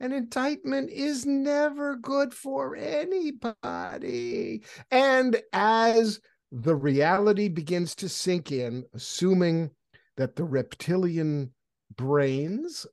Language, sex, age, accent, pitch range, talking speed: English, male, 50-69, American, 145-205 Hz, 95 wpm